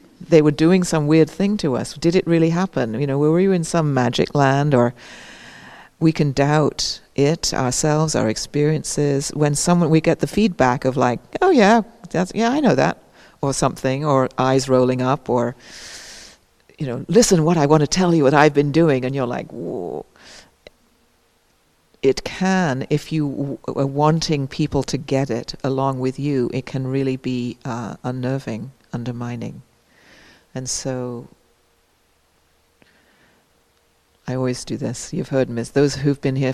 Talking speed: 165 wpm